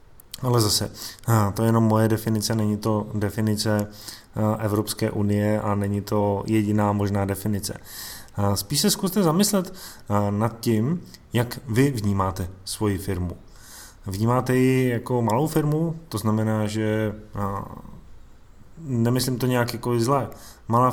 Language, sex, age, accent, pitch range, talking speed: Czech, male, 20-39, native, 105-120 Hz, 125 wpm